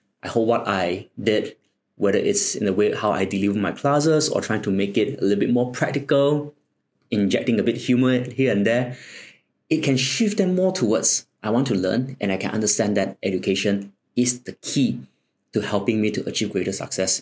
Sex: male